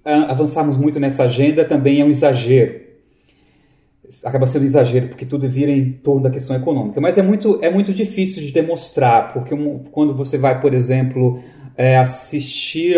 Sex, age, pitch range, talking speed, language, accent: male, 30-49, 125-150 Hz, 155 wpm, Portuguese, Brazilian